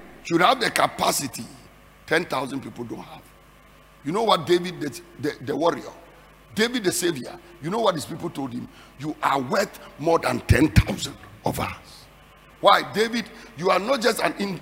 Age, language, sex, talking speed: 50-69, English, male, 170 wpm